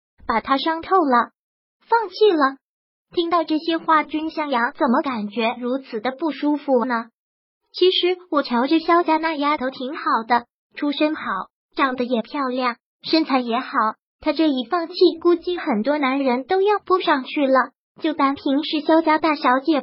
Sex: male